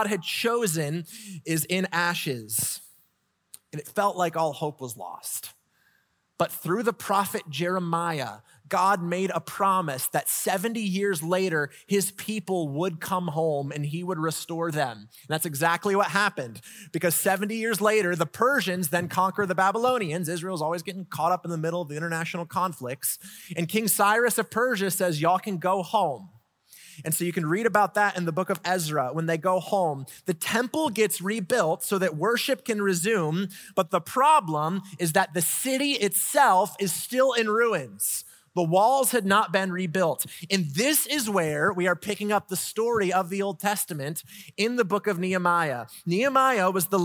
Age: 30-49